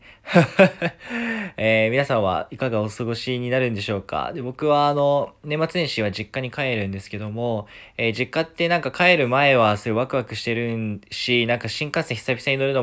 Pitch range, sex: 110-135 Hz, male